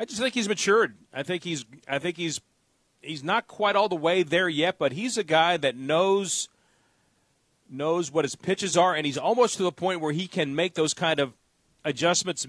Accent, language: American, English